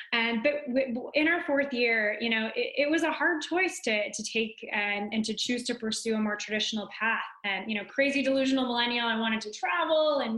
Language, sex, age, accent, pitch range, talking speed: English, female, 20-39, American, 205-250 Hz, 220 wpm